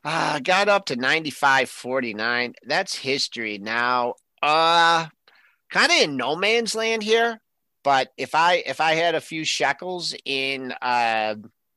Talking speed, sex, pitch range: 150 wpm, male, 120-160 Hz